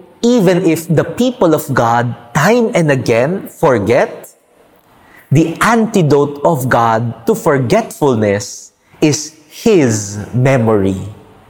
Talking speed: 100 wpm